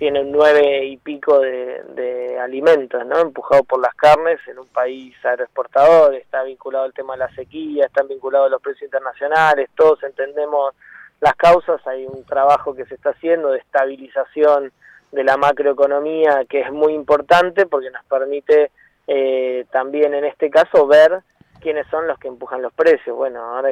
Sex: male